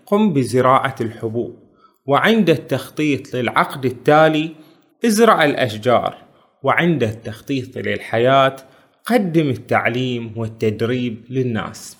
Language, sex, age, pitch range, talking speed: Arabic, male, 20-39, 130-170 Hz, 80 wpm